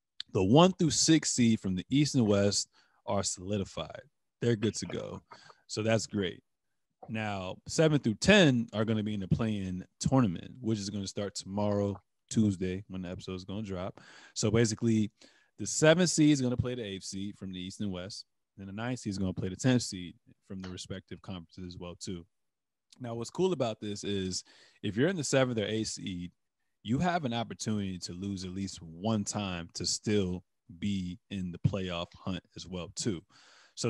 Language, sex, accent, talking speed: English, male, American, 205 wpm